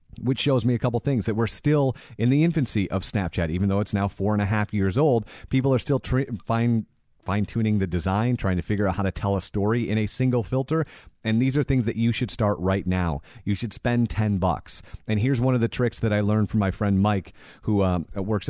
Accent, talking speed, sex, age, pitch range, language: American, 245 wpm, male, 30-49, 95-120 Hz, English